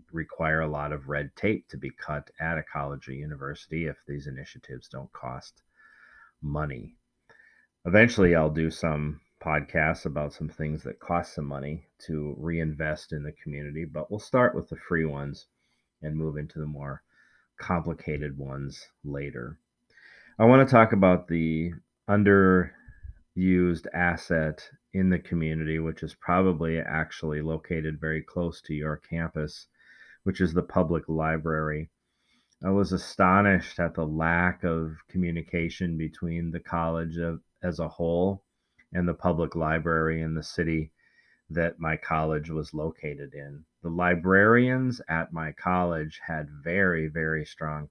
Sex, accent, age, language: male, American, 40-59, English